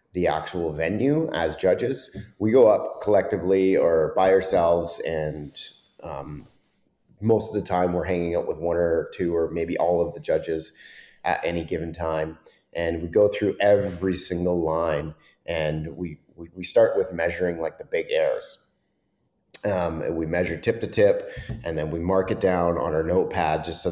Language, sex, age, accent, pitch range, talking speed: English, male, 30-49, American, 85-105 Hz, 180 wpm